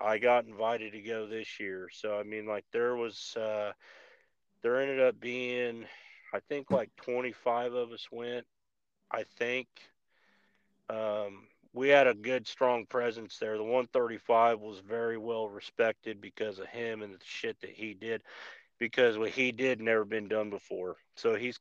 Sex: male